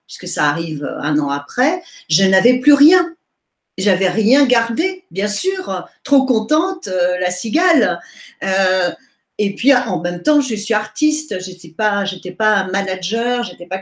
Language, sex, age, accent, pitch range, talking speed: French, female, 50-69, French, 185-255 Hz, 170 wpm